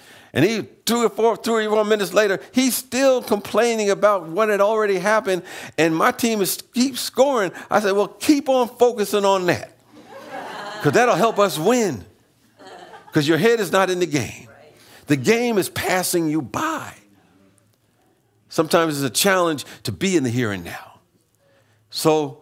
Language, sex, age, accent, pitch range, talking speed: English, male, 50-69, American, 135-195 Hz, 170 wpm